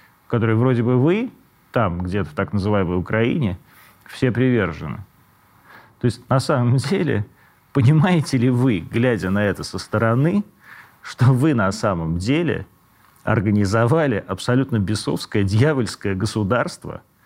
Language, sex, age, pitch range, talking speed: Russian, male, 40-59, 105-130 Hz, 120 wpm